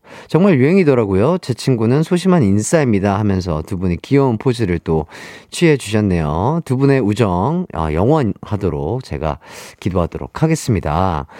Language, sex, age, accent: Korean, male, 40-59, native